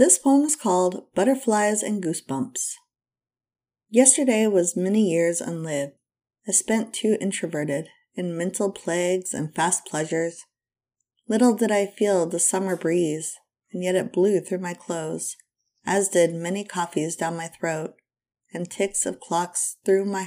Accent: American